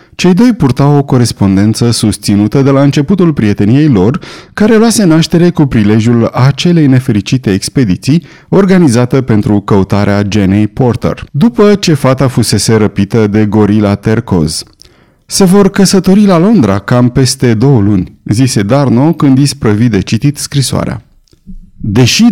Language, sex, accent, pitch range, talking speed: Romanian, male, native, 110-160 Hz, 130 wpm